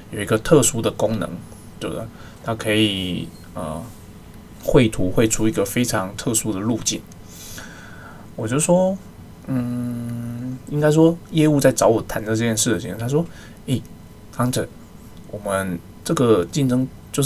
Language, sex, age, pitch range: Chinese, male, 20-39, 100-125 Hz